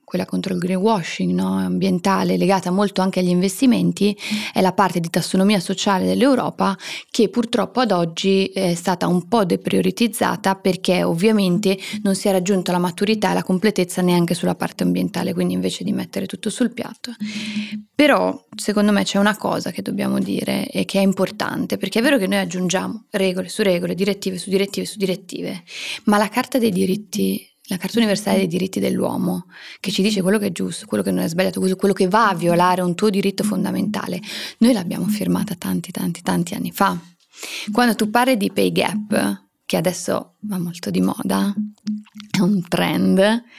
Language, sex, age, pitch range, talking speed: Italian, female, 20-39, 180-210 Hz, 180 wpm